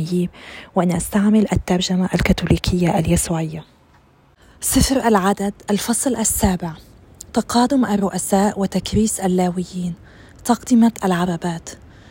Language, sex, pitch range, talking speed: Arabic, female, 185-220 Hz, 75 wpm